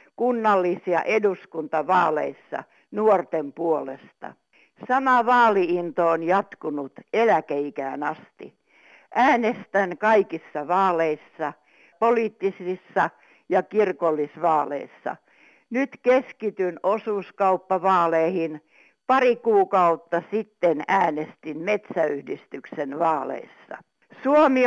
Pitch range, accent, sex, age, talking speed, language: 165-225 Hz, native, female, 60-79, 65 wpm, Finnish